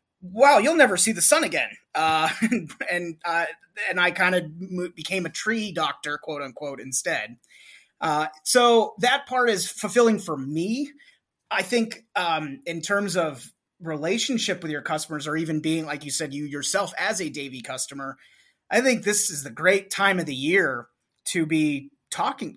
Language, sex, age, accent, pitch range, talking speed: English, male, 30-49, American, 155-215 Hz, 170 wpm